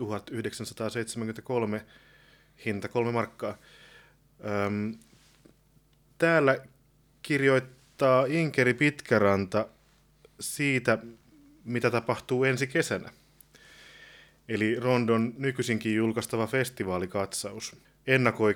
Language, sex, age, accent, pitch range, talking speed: Finnish, male, 30-49, native, 105-130 Hz, 60 wpm